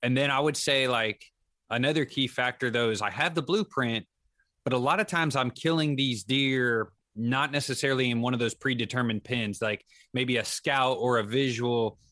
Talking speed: 195 wpm